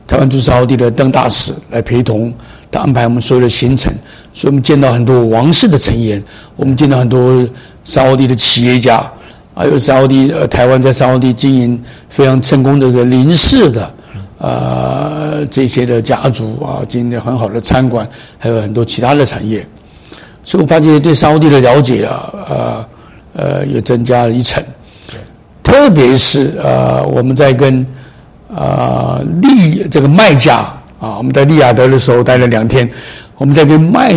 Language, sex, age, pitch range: Chinese, male, 60-79, 120-140 Hz